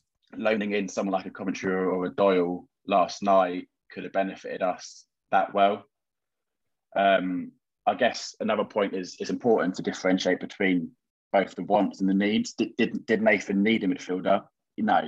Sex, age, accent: male, 20-39, British